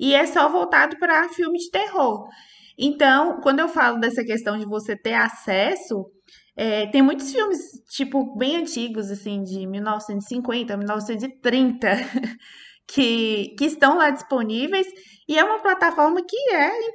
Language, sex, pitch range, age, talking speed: Portuguese, female, 230-315 Hz, 20-39, 145 wpm